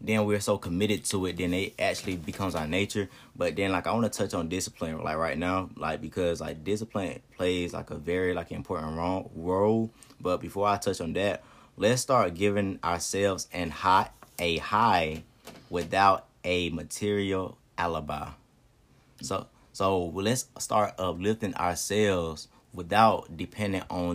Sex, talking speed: male, 155 wpm